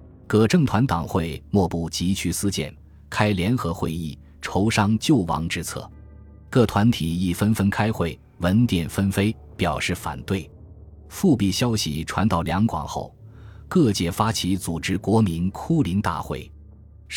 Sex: male